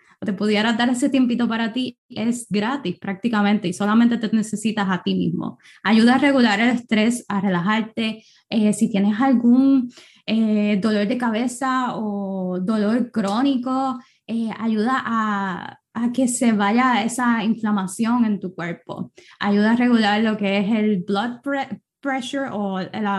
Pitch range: 205-245 Hz